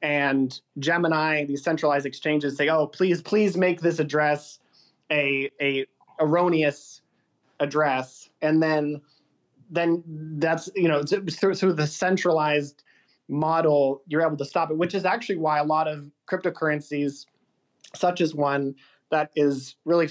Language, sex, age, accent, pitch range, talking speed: English, male, 20-39, American, 145-170 Hz, 135 wpm